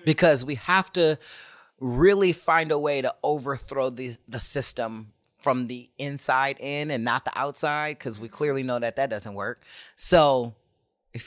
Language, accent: English, American